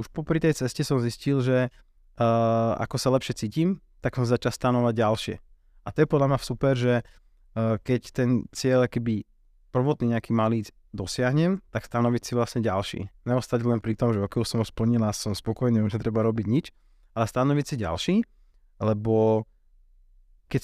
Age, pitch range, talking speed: 20-39, 110-125 Hz, 175 wpm